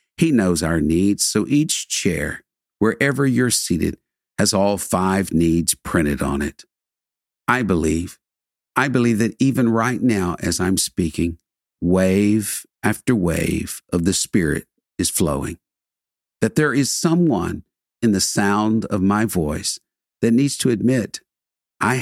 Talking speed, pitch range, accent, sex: 140 wpm, 90-120 Hz, American, male